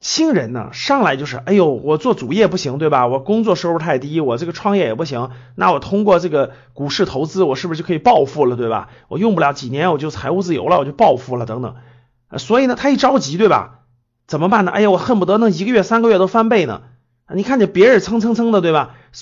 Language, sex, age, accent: Chinese, male, 30-49, native